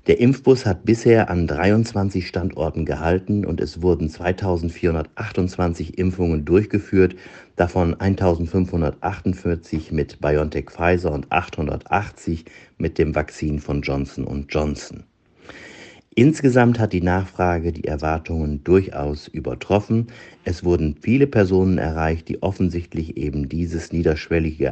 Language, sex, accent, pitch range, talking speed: German, male, German, 80-95 Hz, 105 wpm